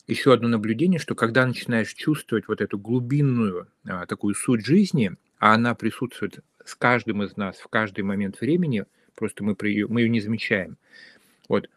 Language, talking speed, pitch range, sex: Russian, 175 wpm, 105-135 Hz, male